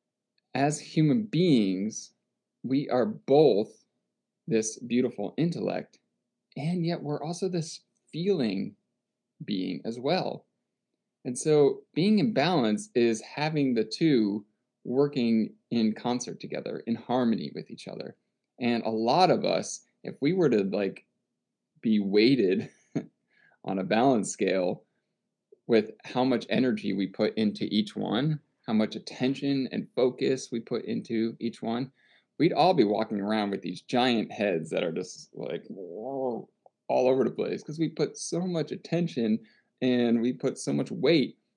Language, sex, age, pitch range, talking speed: English, male, 20-39, 110-150 Hz, 145 wpm